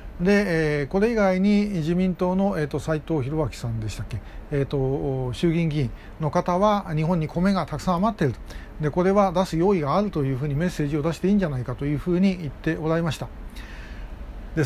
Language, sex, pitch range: Japanese, male, 140-200 Hz